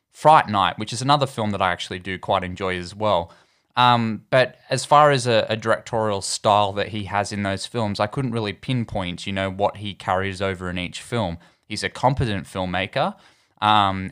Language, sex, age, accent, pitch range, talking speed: English, male, 10-29, Australian, 95-110 Hz, 200 wpm